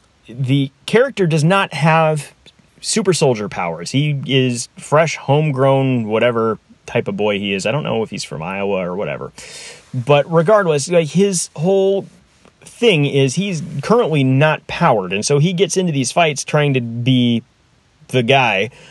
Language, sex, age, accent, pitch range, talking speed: English, male, 30-49, American, 125-175 Hz, 155 wpm